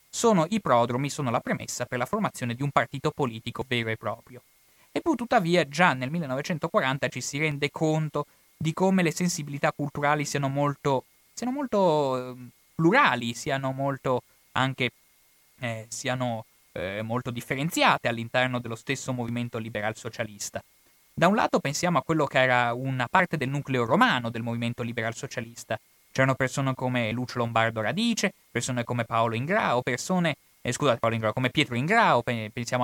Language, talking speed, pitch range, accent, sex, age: Italian, 145 wpm, 115-150 Hz, native, male, 20-39